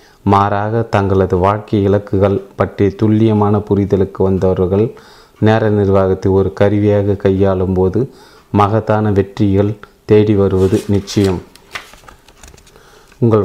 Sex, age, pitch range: male, 30-49, 100-110 Hz